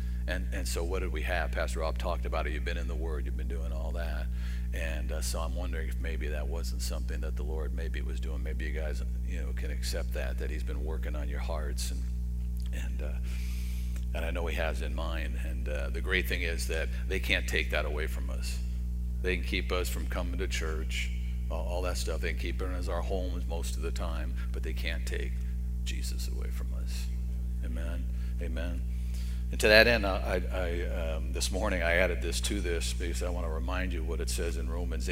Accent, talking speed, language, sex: American, 225 wpm, English, male